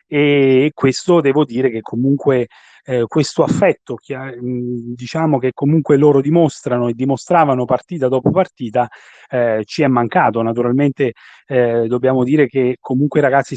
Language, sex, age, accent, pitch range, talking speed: Italian, male, 30-49, native, 125-150 Hz, 140 wpm